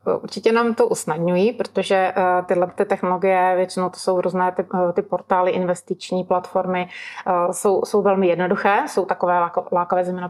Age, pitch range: 30-49, 180-190 Hz